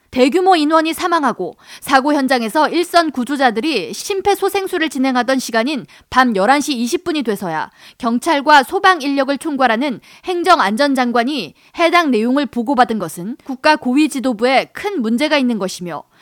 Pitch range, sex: 240-320 Hz, female